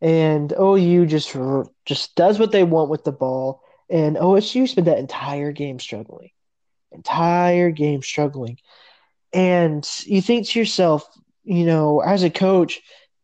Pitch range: 155-190 Hz